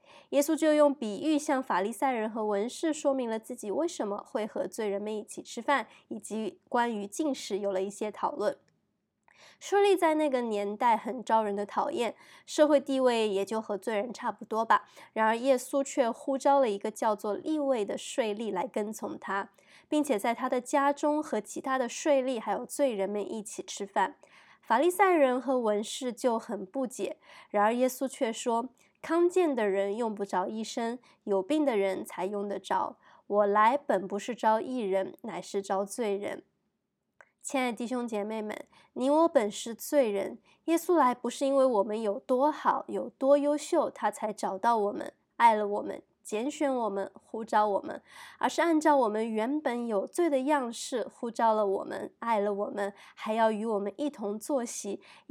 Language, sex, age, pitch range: Chinese, female, 20-39, 205-280 Hz